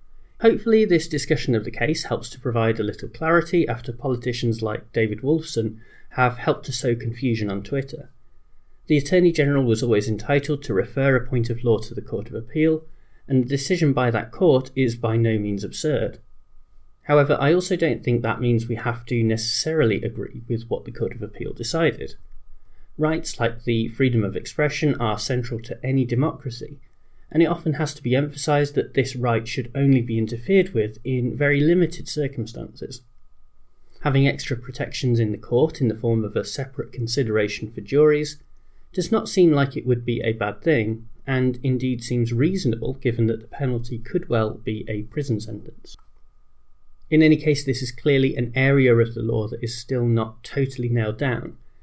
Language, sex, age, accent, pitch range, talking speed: English, male, 30-49, British, 115-145 Hz, 185 wpm